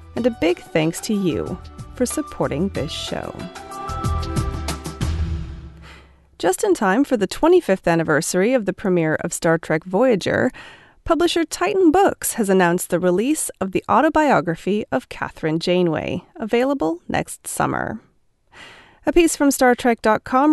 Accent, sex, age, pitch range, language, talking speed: American, female, 30-49, 165-265 Hz, English, 130 wpm